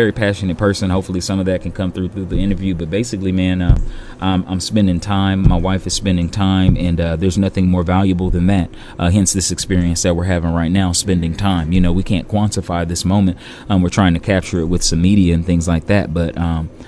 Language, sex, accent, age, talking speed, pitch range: English, male, American, 30-49, 235 wpm, 85-95 Hz